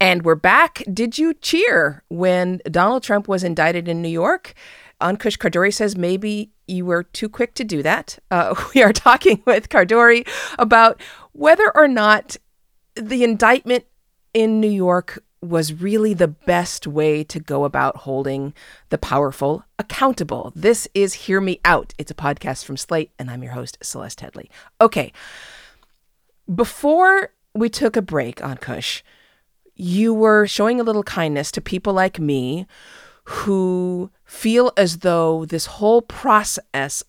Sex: female